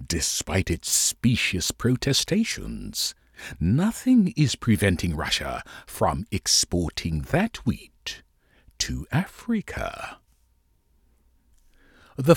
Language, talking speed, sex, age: English, 75 wpm, male, 60-79